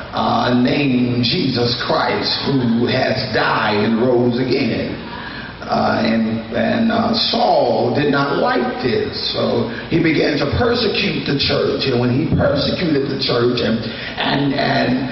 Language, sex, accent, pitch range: English, male, American, 130-170 Hz